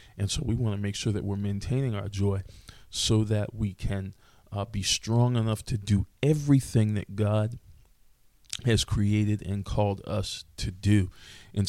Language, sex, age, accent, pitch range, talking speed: English, male, 40-59, American, 100-110 Hz, 170 wpm